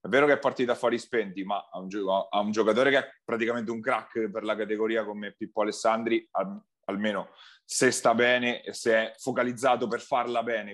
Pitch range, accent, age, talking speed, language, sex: 105-120 Hz, native, 30-49, 200 wpm, Italian, male